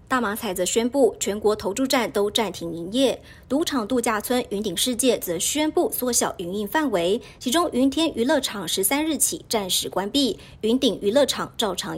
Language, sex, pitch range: Chinese, male, 200-255 Hz